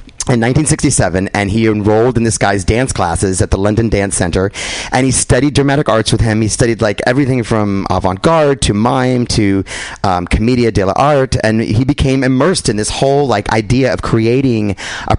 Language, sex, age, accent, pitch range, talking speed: English, male, 30-49, American, 95-125 Hz, 190 wpm